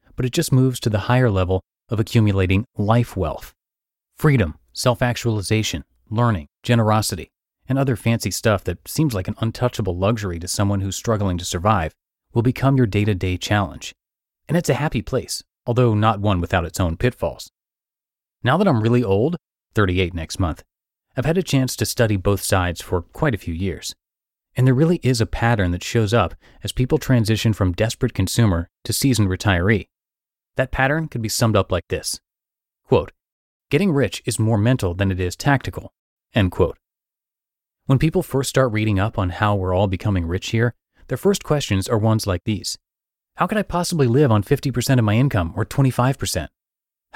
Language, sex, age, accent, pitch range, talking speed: English, male, 30-49, American, 95-130 Hz, 180 wpm